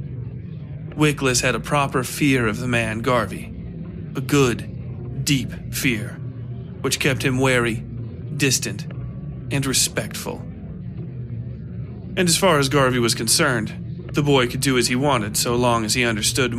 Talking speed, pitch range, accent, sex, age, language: 140 wpm, 120-140 Hz, American, male, 40-59, English